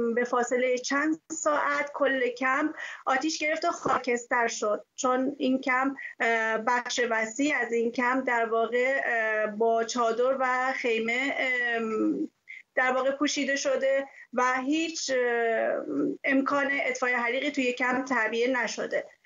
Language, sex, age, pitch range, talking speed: Persian, female, 30-49, 245-280 Hz, 120 wpm